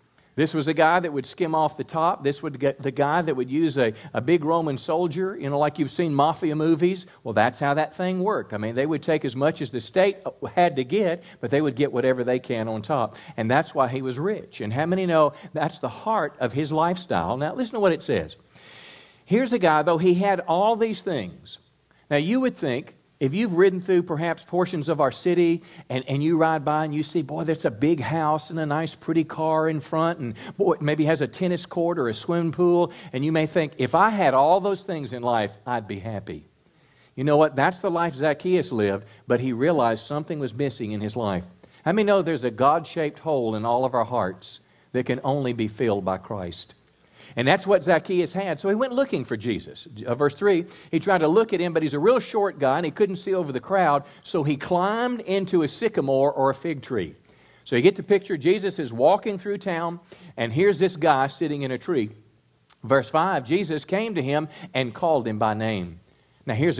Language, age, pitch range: English, 50-69, 130-175 Hz